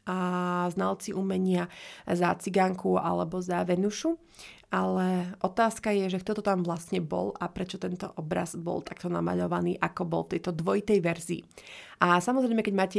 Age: 30-49